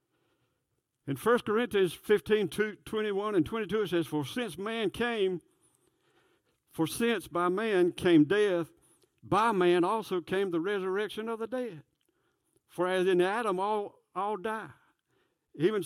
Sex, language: male, English